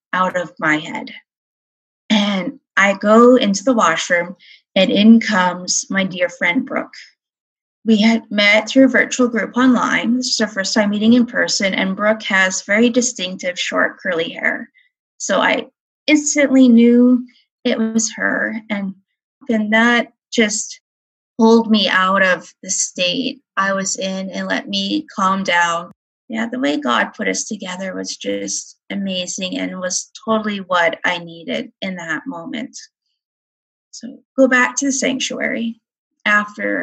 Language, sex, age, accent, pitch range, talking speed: English, female, 20-39, American, 190-255 Hz, 150 wpm